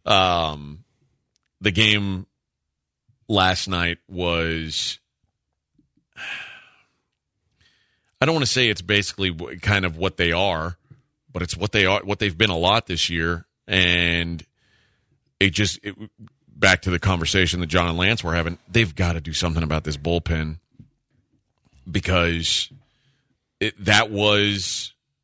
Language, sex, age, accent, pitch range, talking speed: English, male, 40-59, American, 90-125 Hz, 130 wpm